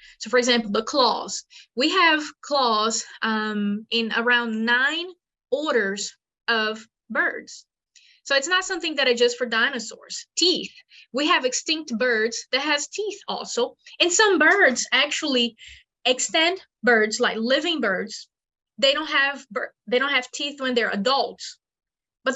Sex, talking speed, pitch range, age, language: female, 140 wpm, 225-300 Hz, 20-39, English